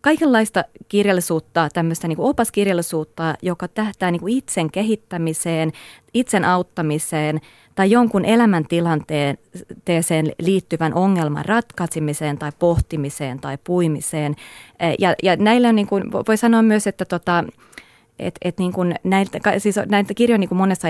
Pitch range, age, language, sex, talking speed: 155-190 Hz, 30-49, Finnish, female, 120 wpm